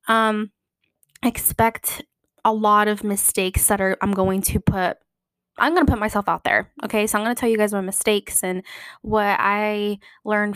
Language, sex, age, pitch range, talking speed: English, female, 10-29, 205-240 Hz, 190 wpm